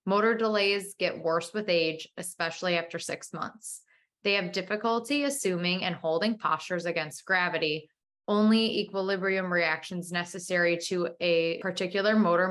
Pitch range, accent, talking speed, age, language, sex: 170-210 Hz, American, 130 wpm, 20-39, English, female